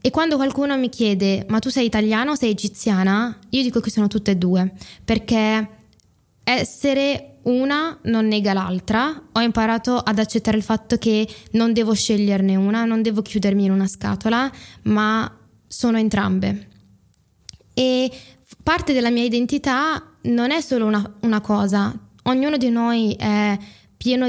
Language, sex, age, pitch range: Italian, female, 20-39, 205-235 Hz